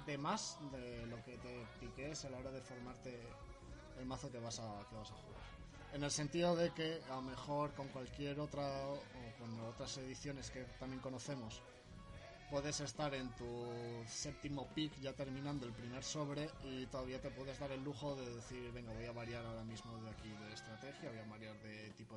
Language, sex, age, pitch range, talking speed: Spanish, male, 20-39, 120-140 Hz, 200 wpm